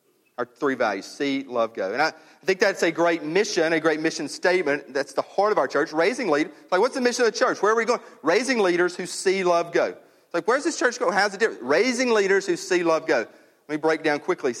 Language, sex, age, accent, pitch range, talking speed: English, male, 40-59, American, 135-185 Hz, 255 wpm